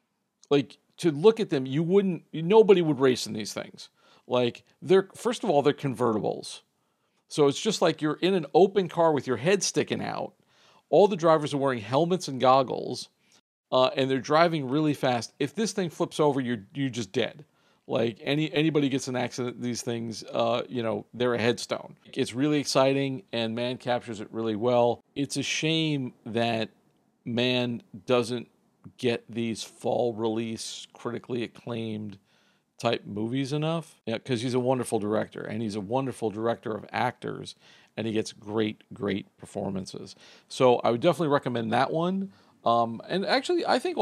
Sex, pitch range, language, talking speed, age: male, 115-150 Hz, English, 170 wpm, 50-69